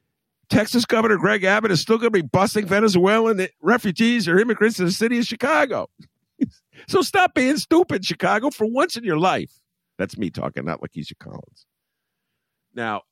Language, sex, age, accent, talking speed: English, male, 50-69, American, 165 wpm